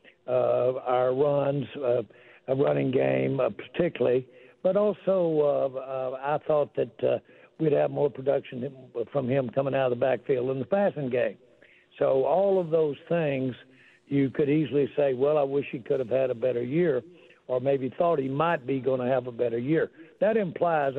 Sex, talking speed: male, 185 wpm